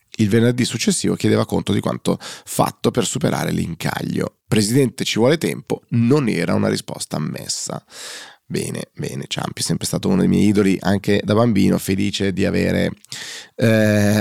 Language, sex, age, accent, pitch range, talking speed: Italian, male, 20-39, native, 95-110 Hz, 155 wpm